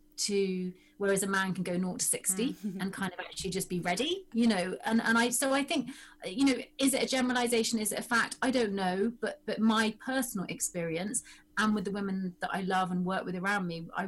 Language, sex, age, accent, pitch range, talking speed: English, female, 30-49, British, 195-255 Hz, 235 wpm